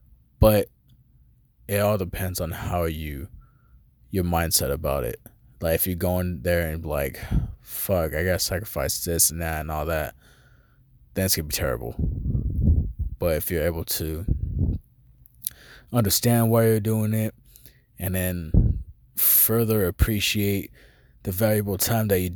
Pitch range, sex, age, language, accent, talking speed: 85-110 Hz, male, 20-39, English, American, 140 wpm